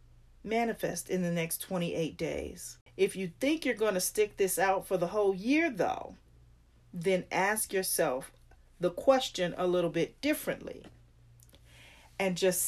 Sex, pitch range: female, 145-205 Hz